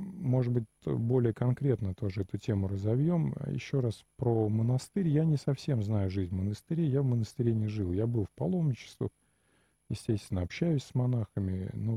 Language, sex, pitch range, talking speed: Russian, male, 100-130 Hz, 165 wpm